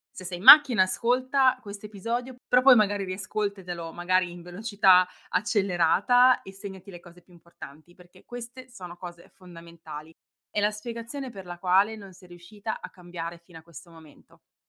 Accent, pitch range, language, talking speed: native, 175-245 Hz, Italian, 170 wpm